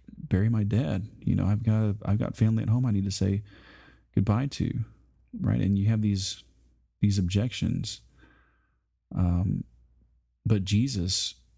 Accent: American